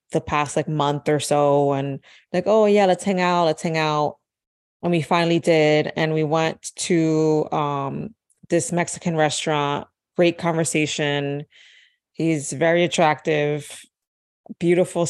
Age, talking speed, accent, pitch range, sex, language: 20-39, 135 wpm, American, 155-180 Hz, female, English